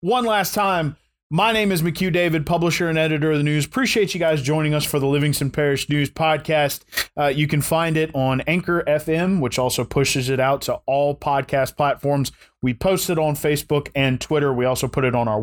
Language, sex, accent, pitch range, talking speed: English, male, American, 125-155 Hz, 215 wpm